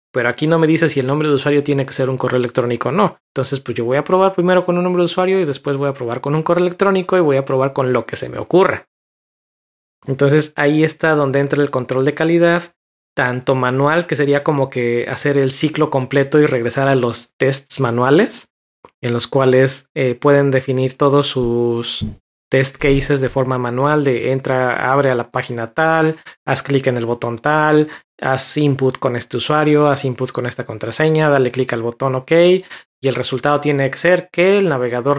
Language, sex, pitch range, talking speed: Spanish, male, 130-150 Hz, 210 wpm